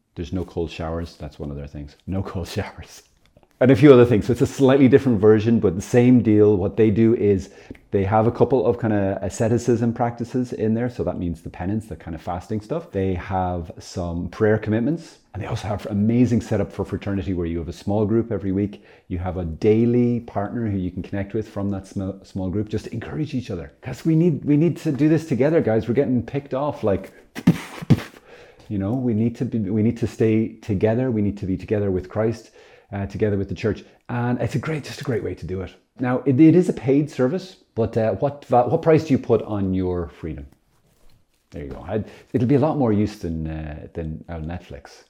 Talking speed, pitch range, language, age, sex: 230 wpm, 90-120 Hz, English, 30-49, male